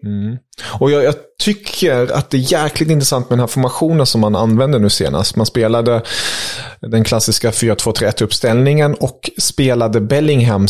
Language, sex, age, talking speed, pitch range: English, male, 30-49, 155 wpm, 105-135 Hz